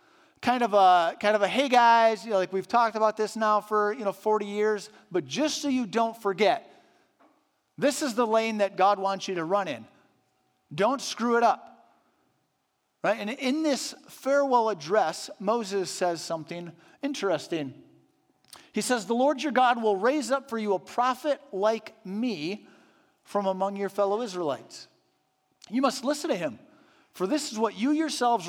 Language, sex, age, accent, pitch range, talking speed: English, male, 40-59, American, 185-255 Hz, 175 wpm